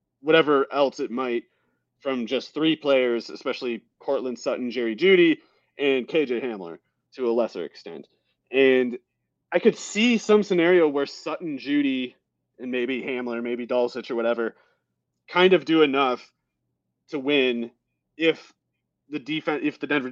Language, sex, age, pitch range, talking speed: English, male, 30-49, 115-145 Hz, 145 wpm